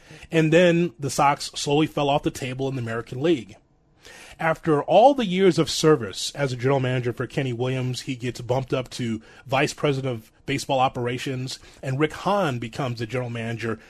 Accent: American